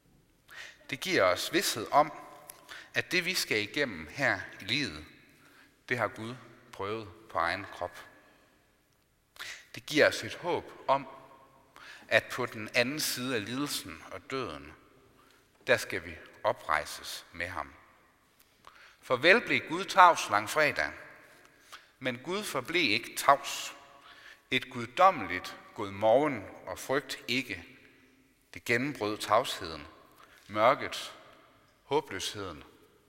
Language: Danish